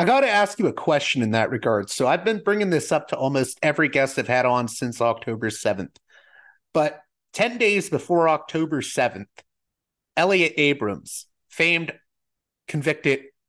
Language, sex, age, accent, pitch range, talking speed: English, male, 30-49, American, 125-170 Hz, 160 wpm